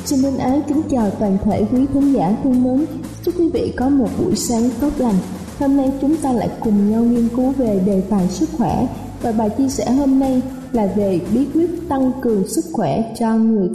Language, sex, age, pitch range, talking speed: Vietnamese, female, 20-39, 220-275 Hz, 225 wpm